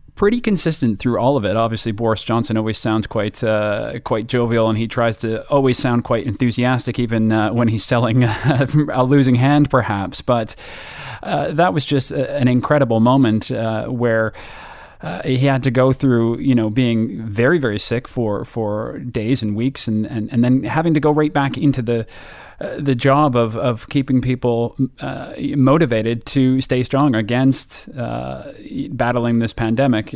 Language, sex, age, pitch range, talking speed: English, male, 30-49, 115-135 Hz, 175 wpm